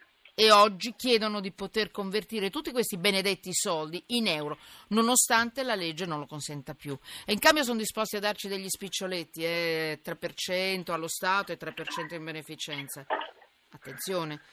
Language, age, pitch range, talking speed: Italian, 40-59, 150-195 Hz, 150 wpm